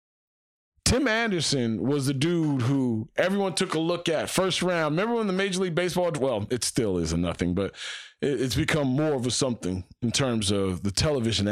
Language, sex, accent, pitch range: English, male, American, 125-185 Hz